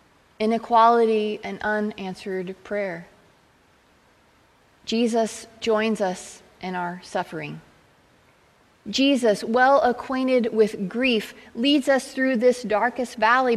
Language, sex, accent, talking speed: English, female, American, 95 wpm